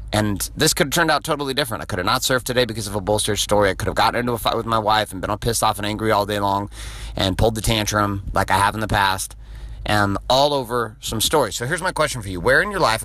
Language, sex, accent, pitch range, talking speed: English, male, American, 105-130 Hz, 295 wpm